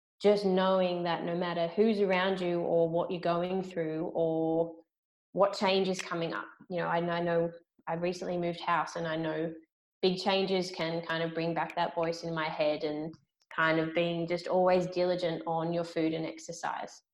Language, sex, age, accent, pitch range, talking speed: English, female, 20-39, Australian, 165-185 Hz, 195 wpm